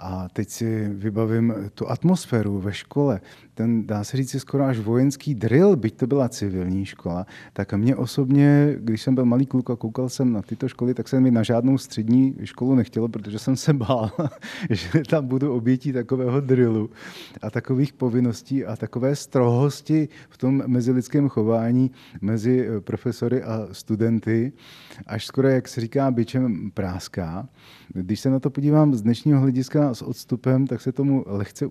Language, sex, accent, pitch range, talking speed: Czech, male, native, 110-140 Hz, 165 wpm